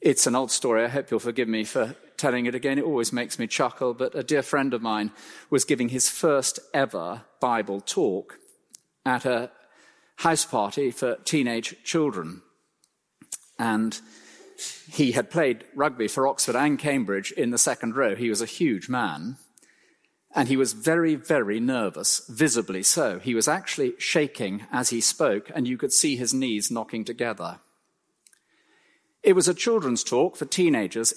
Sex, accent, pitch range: male, British, 120-180 Hz